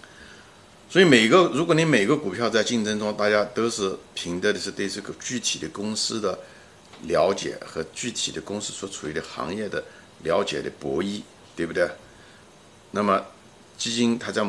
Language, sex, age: Chinese, male, 50-69